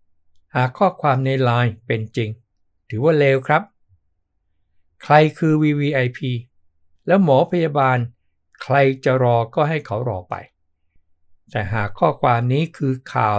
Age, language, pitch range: 60-79, Thai, 100-135 Hz